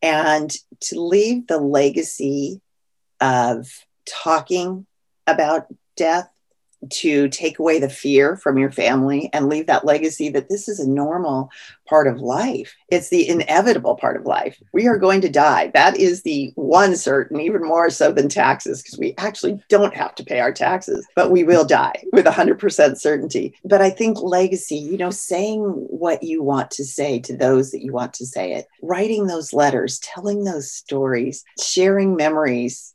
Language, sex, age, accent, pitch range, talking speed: English, female, 40-59, American, 145-215 Hz, 175 wpm